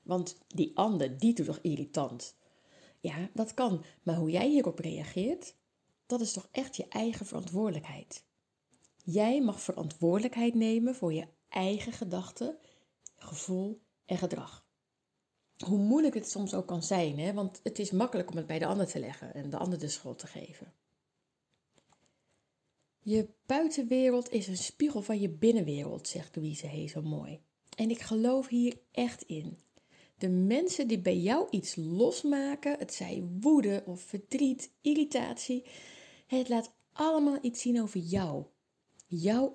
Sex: female